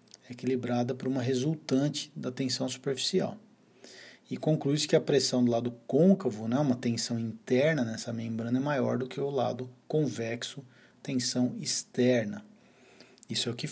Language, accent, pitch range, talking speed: Portuguese, Brazilian, 120-135 Hz, 150 wpm